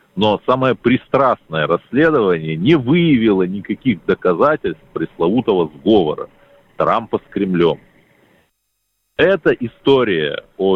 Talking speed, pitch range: 90 wpm, 90-145 Hz